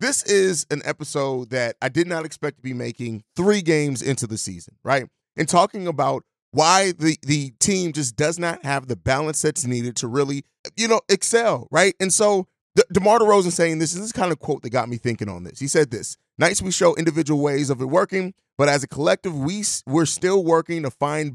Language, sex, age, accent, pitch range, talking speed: English, male, 30-49, American, 135-185 Hz, 220 wpm